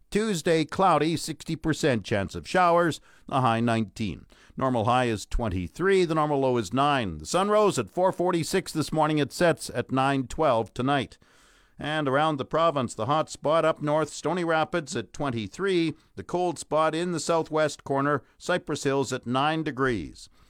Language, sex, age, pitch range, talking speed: English, male, 50-69, 125-165 Hz, 160 wpm